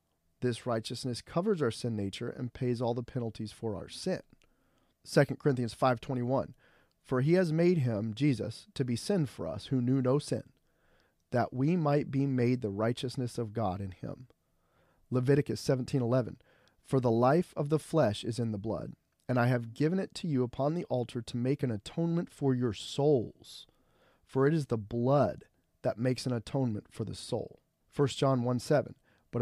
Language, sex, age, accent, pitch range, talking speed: English, male, 30-49, American, 115-140 Hz, 180 wpm